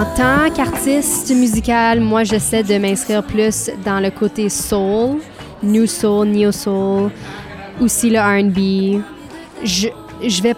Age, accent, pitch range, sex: 20-39, Canadian, 190-215 Hz, female